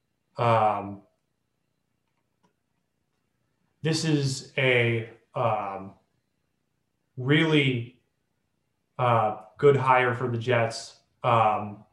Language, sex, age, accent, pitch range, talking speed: English, male, 30-49, American, 115-140 Hz, 65 wpm